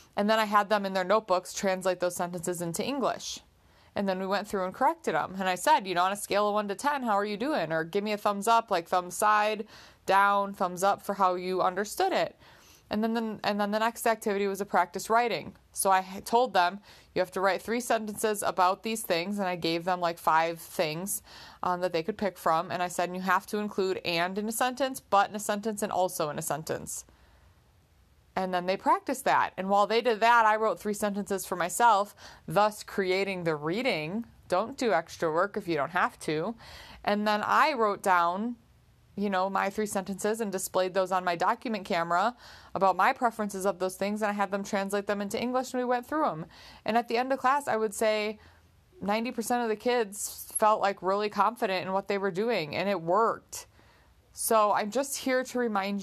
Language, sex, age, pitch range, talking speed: English, female, 30-49, 185-220 Hz, 220 wpm